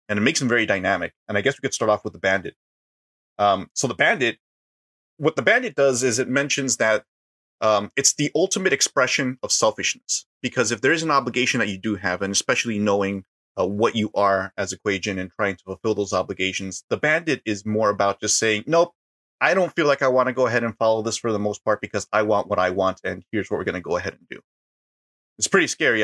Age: 30-49